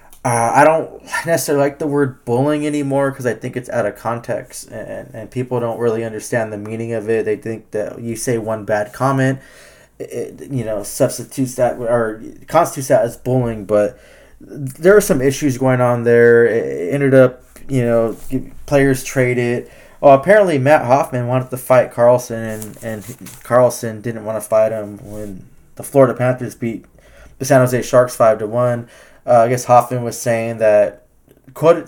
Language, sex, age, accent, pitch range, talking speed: English, male, 20-39, American, 115-135 Hz, 180 wpm